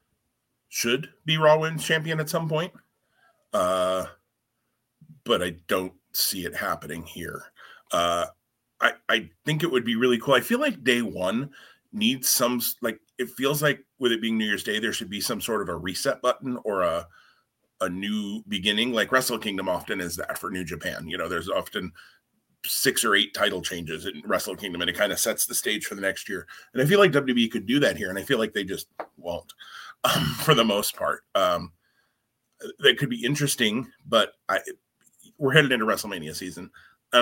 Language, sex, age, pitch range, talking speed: English, male, 30-49, 100-155 Hz, 195 wpm